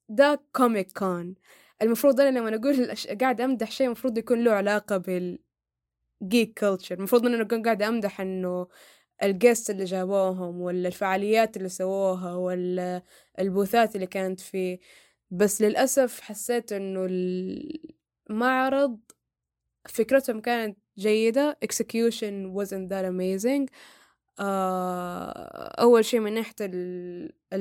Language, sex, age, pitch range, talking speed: Arabic, female, 10-29, 195-250 Hz, 110 wpm